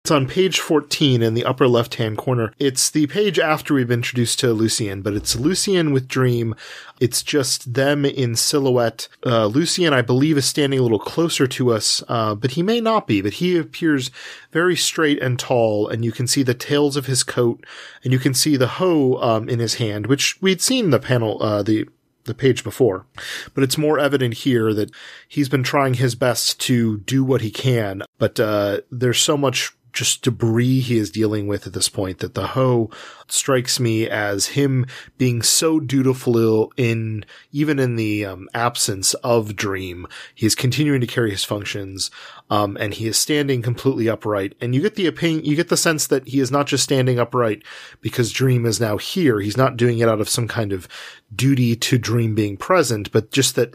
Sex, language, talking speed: male, English, 200 wpm